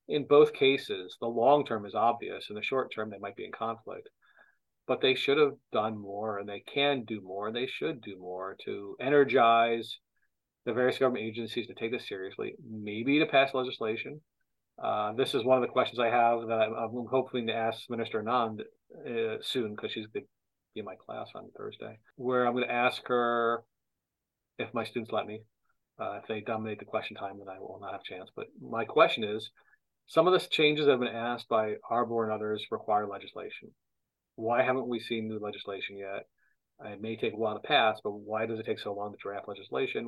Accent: American